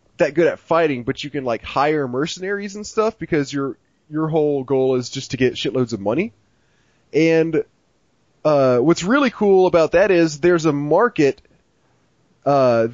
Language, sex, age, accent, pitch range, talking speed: English, male, 20-39, American, 125-165 Hz, 165 wpm